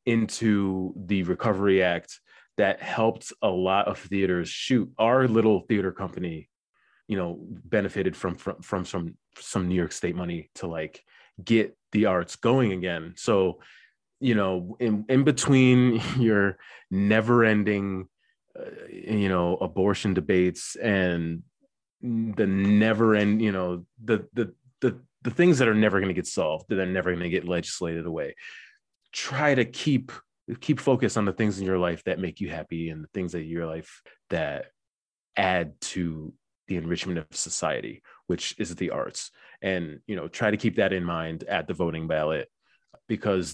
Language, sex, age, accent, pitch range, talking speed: English, male, 30-49, American, 85-110 Hz, 165 wpm